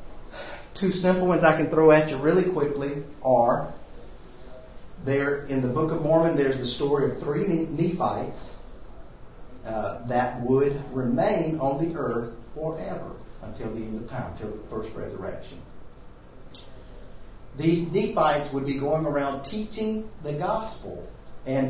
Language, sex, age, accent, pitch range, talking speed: English, male, 50-69, American, 135-170 Hz, 140 wpm